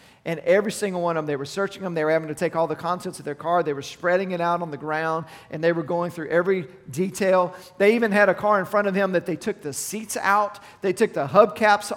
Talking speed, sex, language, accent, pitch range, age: 275 wpm, male, English, American, 160-210 Hz, 40-59